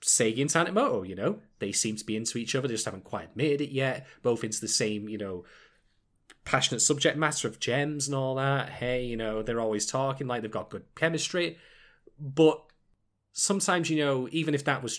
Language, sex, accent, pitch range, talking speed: English, male, British, 115-150 Hz, 210 wpm